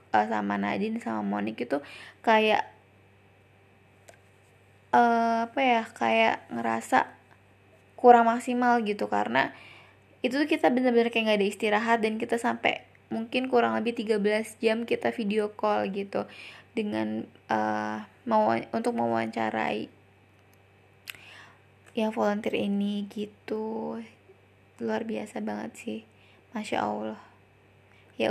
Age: 20-39